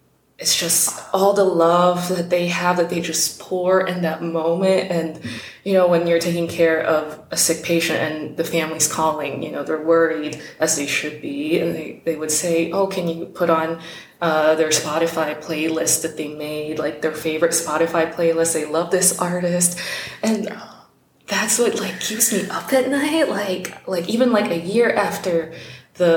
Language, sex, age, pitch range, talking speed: English, female, 20-39, 160-185 Hz, 185 wpm